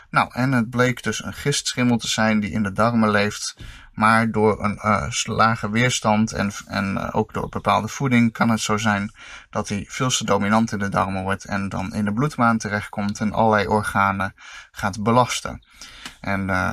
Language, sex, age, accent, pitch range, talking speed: Dutch, male, 20-39, Dutch, 105-125 Hz, 185 wpm